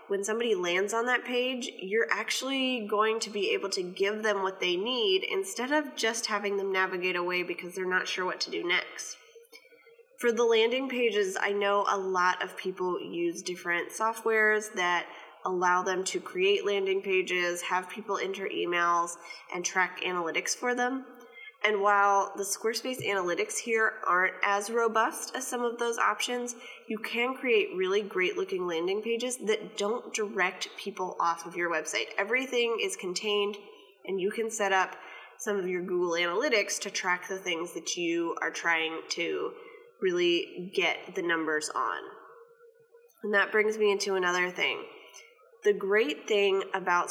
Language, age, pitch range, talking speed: English, 20-39, 185-255 Hz, 165 wpm